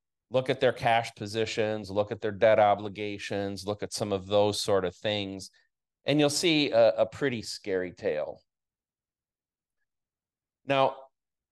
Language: English